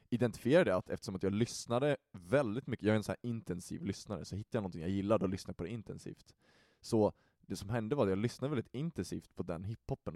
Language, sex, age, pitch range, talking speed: Swedish, male, 20-39, 95-120 Hz, 230 wpm